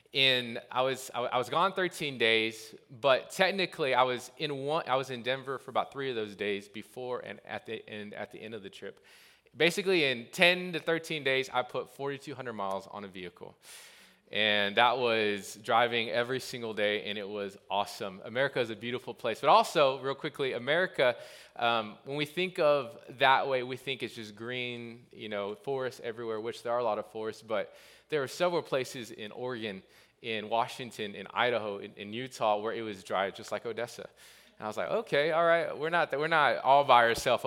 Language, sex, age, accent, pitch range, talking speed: English, male, 20-39, American, 105-135 Hz, 210 wpm